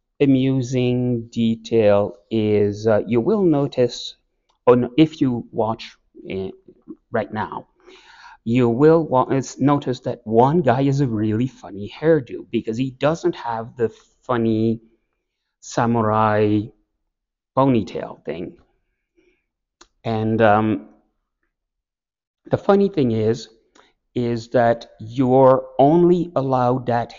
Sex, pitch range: male, 110-130 Hz